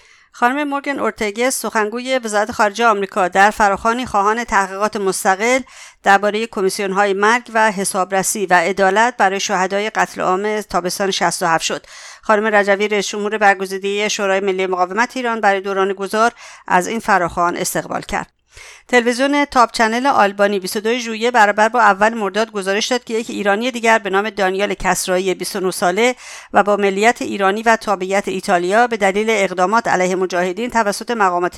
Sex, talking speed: female, 150 wpm